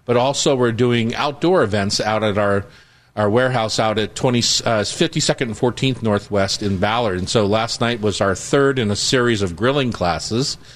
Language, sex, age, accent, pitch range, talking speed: English, male, 50-69, American, 110-140 Hz, 180 wpm